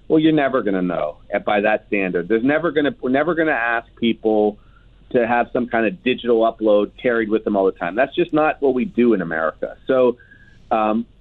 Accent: American